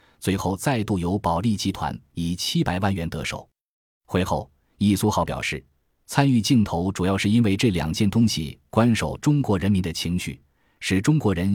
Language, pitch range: Chinese, 85-115 Hz